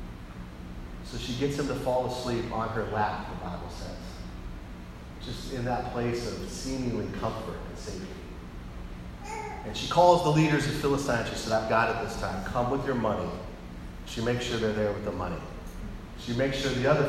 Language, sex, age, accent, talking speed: English, male, 40-59, American, 185 wpm